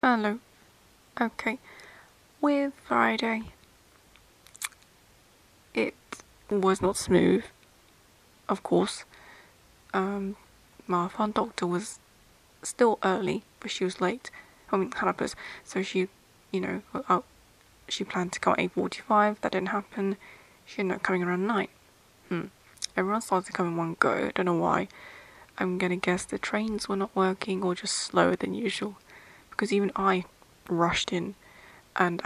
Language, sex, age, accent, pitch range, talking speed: English, female, 20-39, British, 185-210 Hz, 140 wpm